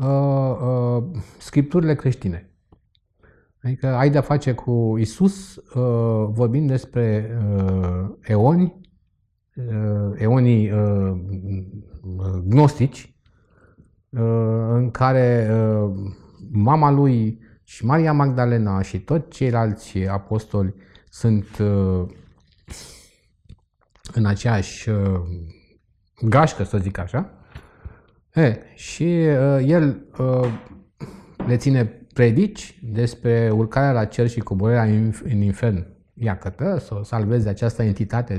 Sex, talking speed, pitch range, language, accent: male, 100 wpm, 100-135 Hz, Romanian, native